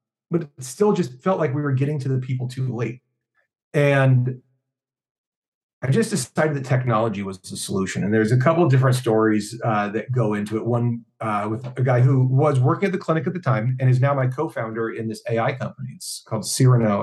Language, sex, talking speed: English, male, 215 wpm